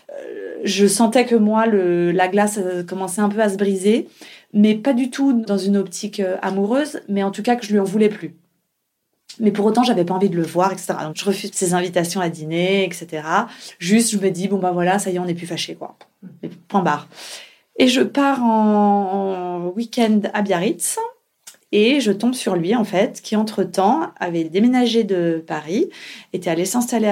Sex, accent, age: female, French, 30-49